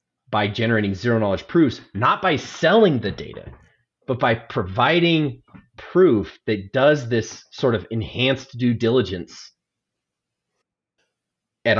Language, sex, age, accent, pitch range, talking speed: English, male, 30-49, American, 95-125 Hz, 115 wpm